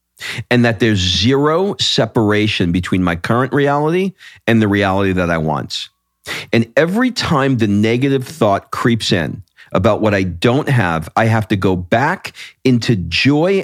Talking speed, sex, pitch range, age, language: 155 wpm, male, 100-135 Hz, 40-59, English